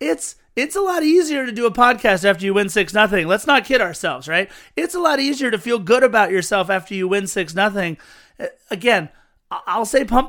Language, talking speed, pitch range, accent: English, 205 wpm, 185-230 Hz, American